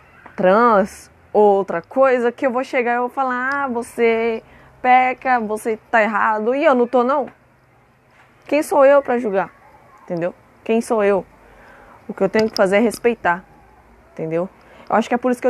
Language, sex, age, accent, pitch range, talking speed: Portuguese, female, 20-39, Brazilian, 170-235 Hz, 180 wpm